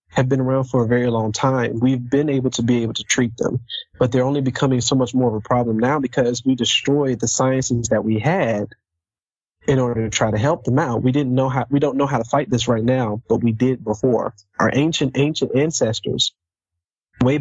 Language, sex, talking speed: English, male, 230 wpm